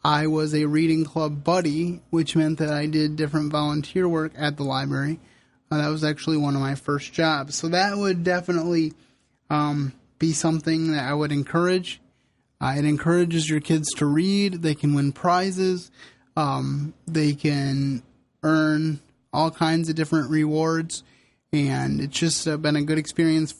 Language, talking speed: English, 165 wpm